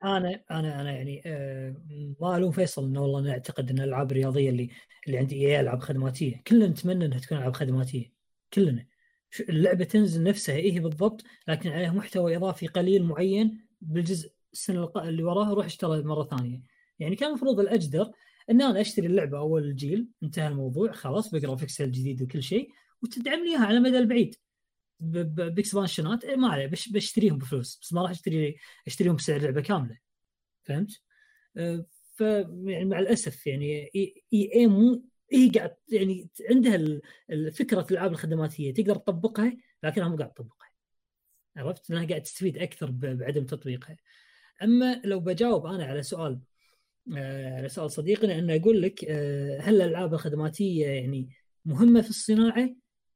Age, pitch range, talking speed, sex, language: 20-39, 145-210 Hz, 150 wpm, female, Arabic